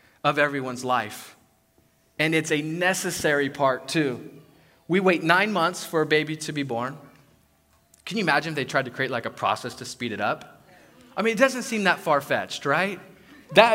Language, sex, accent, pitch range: English, male, American, 150-200 Hz